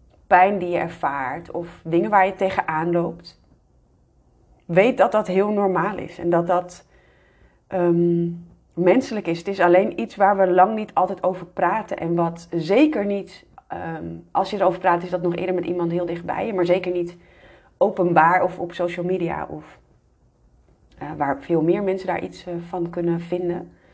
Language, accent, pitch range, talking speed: Dutch, Dutch, 170-190 Hz, 180 wpm